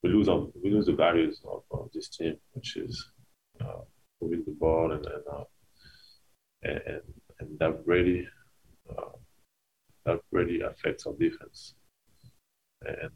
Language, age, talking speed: English, 30-49, 140 wpm